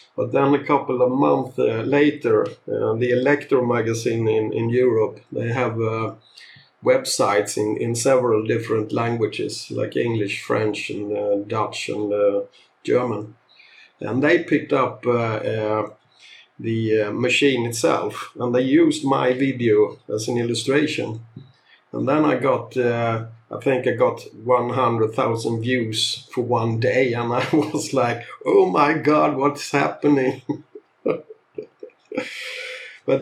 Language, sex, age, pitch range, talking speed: English, male, 50-69, 115-145 Hz, 135 wpm